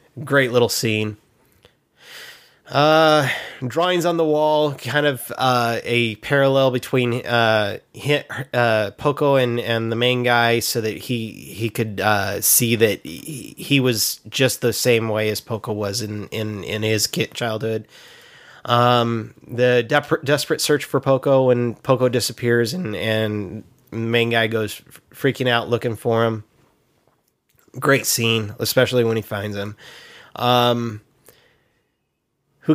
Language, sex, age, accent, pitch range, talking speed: English, male, 20-39, American, 115-135 Hz, 135 wpm